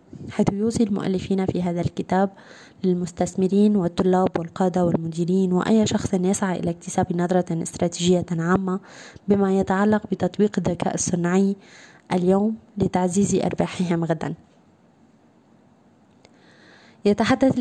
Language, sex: Arabic, female